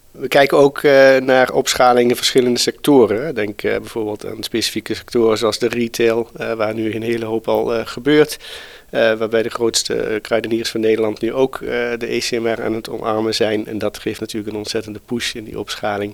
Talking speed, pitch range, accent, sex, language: 195 wpm, 105-125 Hz, Dutch, male, Dutch